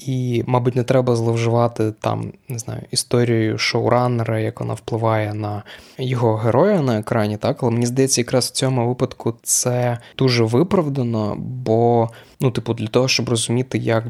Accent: native